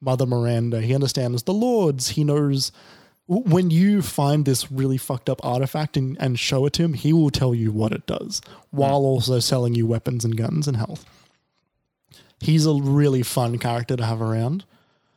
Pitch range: 120-150 Hz